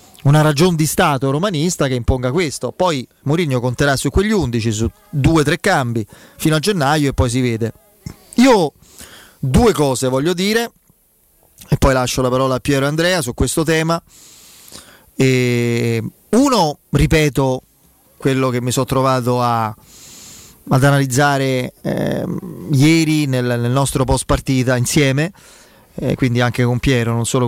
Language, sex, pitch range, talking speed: Italian, male, 125-155 Hz, 150 wpm